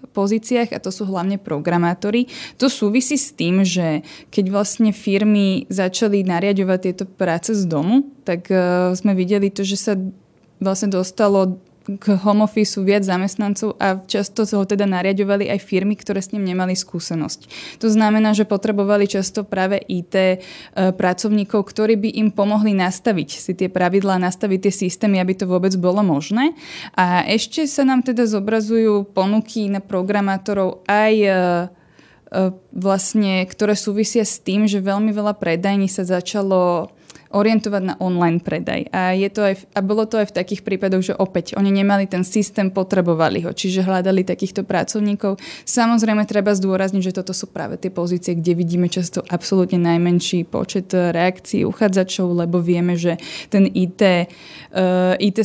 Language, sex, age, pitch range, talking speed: Slovak, female, 20-39, 185-210 Hz, 160 wpm